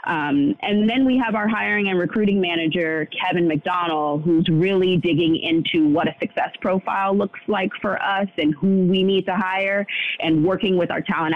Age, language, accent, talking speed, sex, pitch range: 30-49, English, American, 185 wpm, female, 155-210 Hz